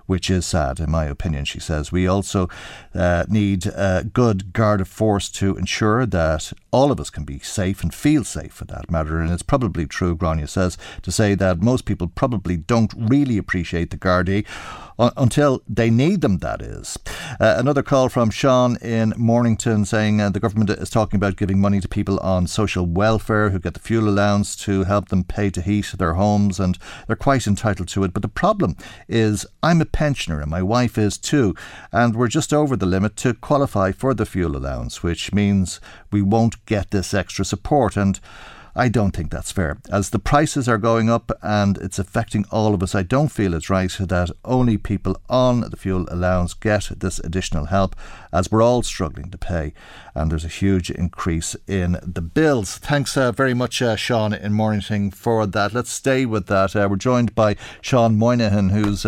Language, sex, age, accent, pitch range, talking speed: English, male, 50-69, Irish, 95-115 Hz, 200 wpm